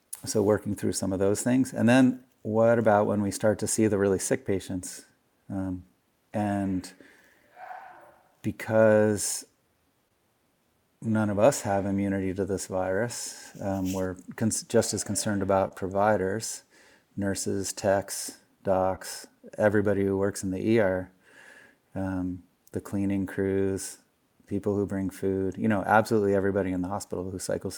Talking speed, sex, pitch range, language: 140 wpm, male, 95-105 Hz, English